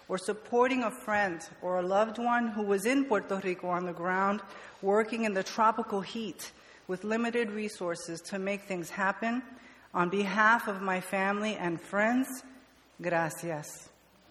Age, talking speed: 50-69, 150 wpm